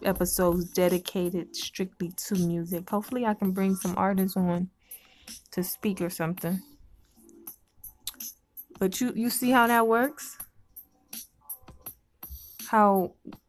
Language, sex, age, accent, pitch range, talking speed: English, female, 20-39, American, 185-225 Hz, 105 wpm